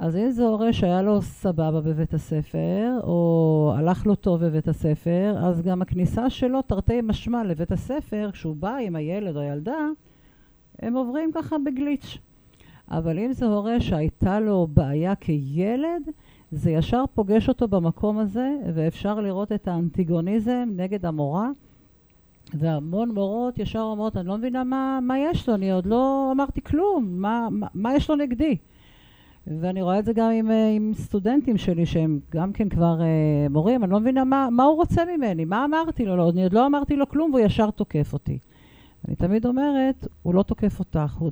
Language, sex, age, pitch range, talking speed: Hebrew, female, 50-69, 160-235 Hz, 175 wpm